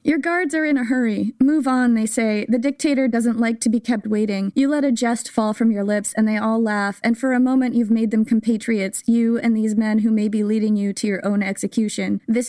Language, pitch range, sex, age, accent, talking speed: English, 200-235 Hz, female, 20-39, American, 250 wpm